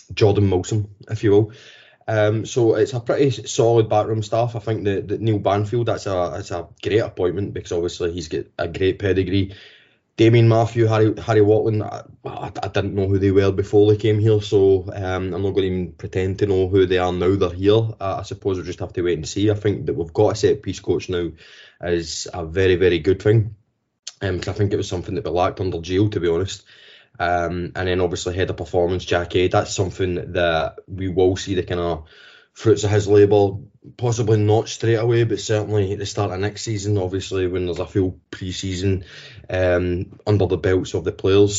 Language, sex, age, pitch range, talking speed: English, male, 20-39, 95-105 Hz, 215 wpm